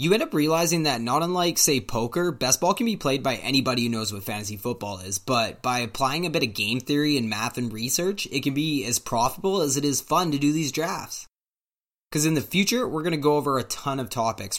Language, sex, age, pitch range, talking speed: English, male, 20-39, 115-150 Hz, 245 wpm